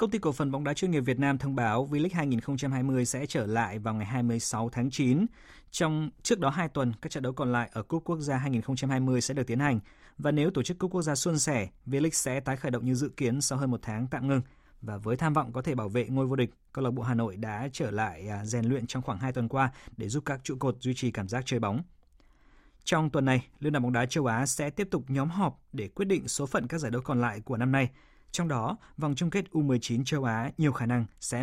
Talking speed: 265 wpm